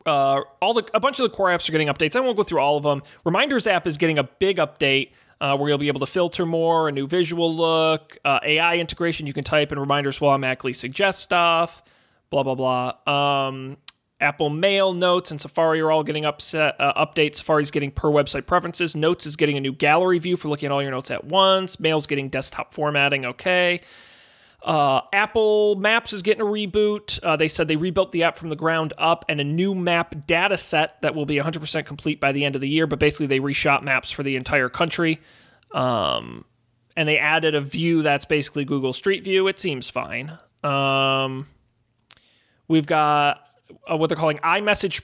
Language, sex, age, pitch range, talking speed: English, male, 30-49, 140-175 Hz, 210 wpm